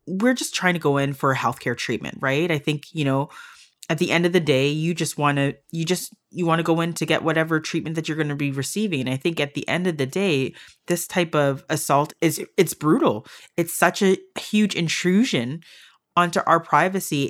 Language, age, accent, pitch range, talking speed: English, 30-49, American, 140-170 Hz, 230 wpm